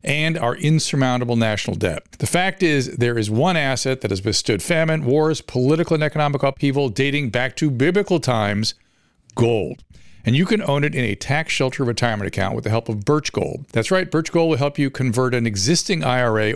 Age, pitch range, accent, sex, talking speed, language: 50-69, 115-155 Hz, American, male, 200 wpm, English